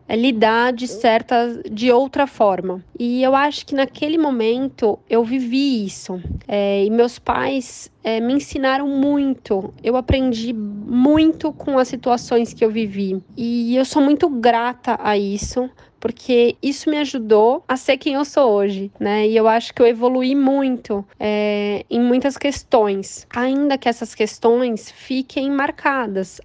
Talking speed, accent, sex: 145 wpm, Brazilian, female